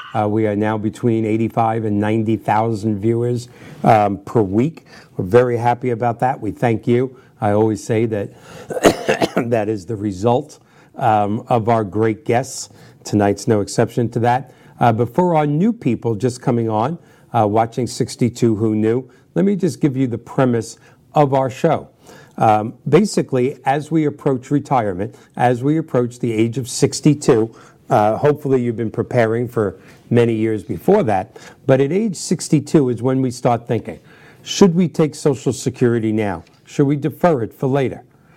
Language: English